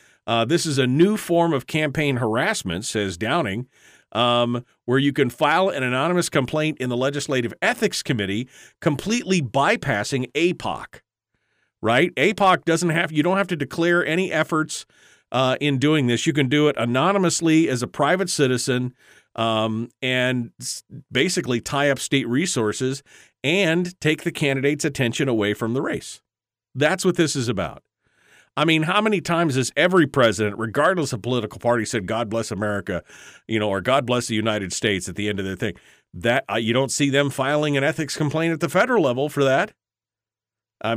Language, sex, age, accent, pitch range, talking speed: English, male, 40-59, American, 110-155 Hz, 175 wpm